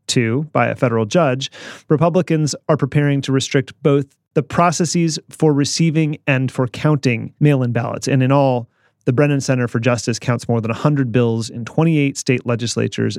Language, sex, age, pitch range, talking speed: English, male, 30-49, 120-150 Hz, 170 wpm